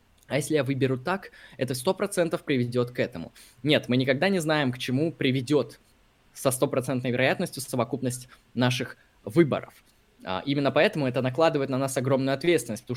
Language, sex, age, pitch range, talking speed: Russian, male, 20-39, 120-135 Hz, 155 wpm